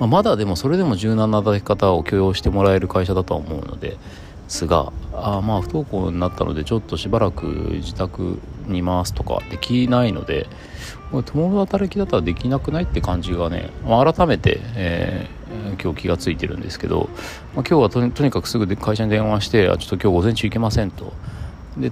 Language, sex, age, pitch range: Japanese, male, 40-59, 85-115 Hz